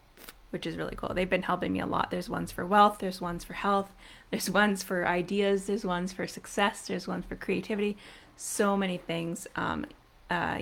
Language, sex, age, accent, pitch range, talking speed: English, female, 20-39, American, 170-205 Hz, 200 wpm